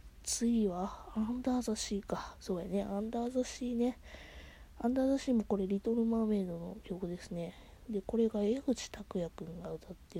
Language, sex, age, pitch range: Japanese, female, 20-39, 170-220 Hz